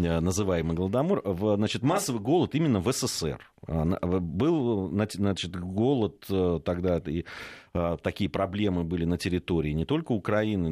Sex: male